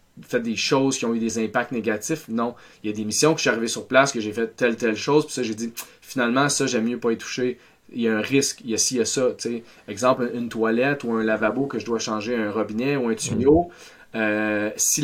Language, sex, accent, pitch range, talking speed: French, male, Canadian, 110-135 Hz, 280 wpm